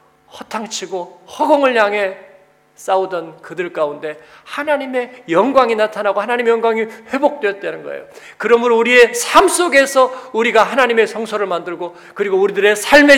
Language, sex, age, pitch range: Korean, male, 40-59, 160-230 Hz